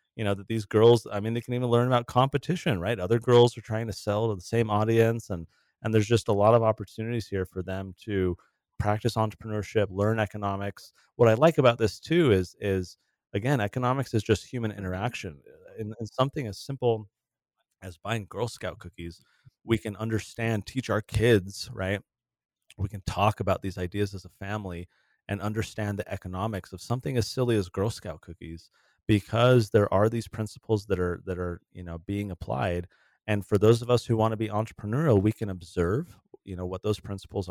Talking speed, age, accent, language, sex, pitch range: 195 wpm, 30-49, American, English, male, 95-115 Hz